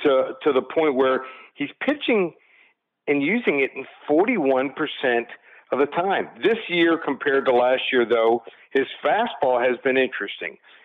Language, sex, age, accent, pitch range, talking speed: English, male, 50-69, American, 130-155 Hz, 150 wpm